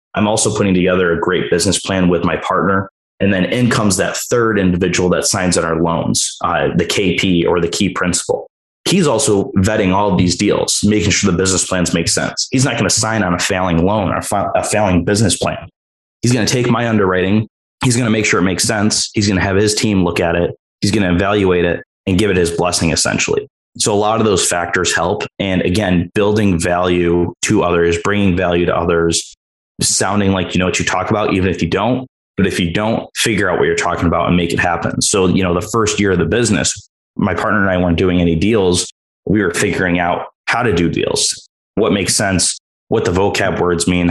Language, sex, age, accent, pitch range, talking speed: English, male, 20-39, American, 85-105 Hz, 225 wpm